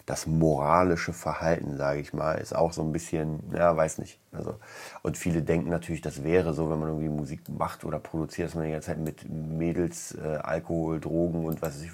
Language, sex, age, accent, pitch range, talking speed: German, male, 30-49, German, 80-90 Hz, 210 wpm